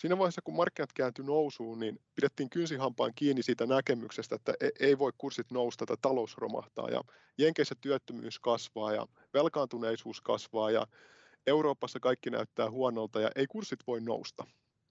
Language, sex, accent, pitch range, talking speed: Finnish, male, native, 120-155 Hz, 145 wpm